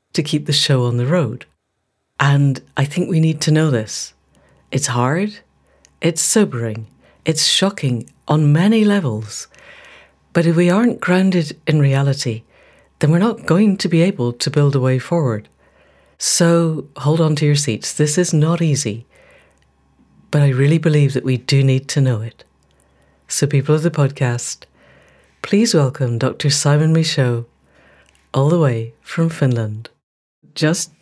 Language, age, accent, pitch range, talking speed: English, 60-79, British, 130-170 Hz, 155 wpm